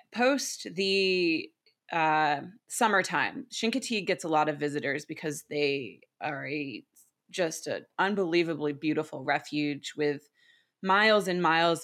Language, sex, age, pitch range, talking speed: English, female, 20-39, 155-195 Hz, 110 wpm